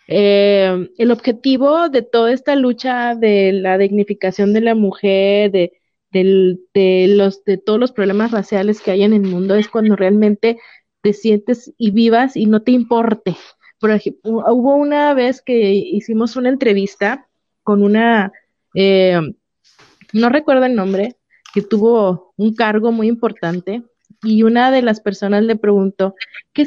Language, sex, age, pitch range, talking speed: Spanish, female, 30-49, 200-235 Hz, 155 wpm